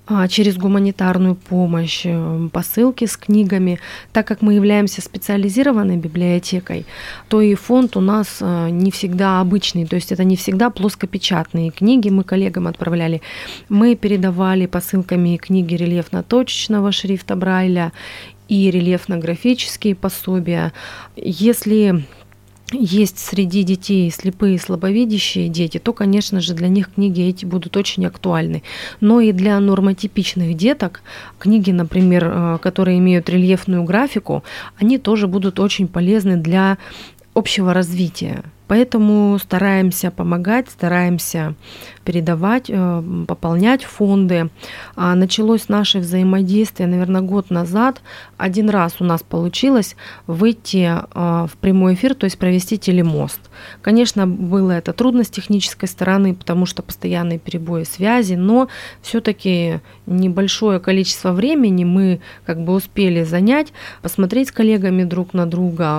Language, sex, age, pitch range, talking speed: Russian, female, 30-49, 175-205 Hz, 120 wpm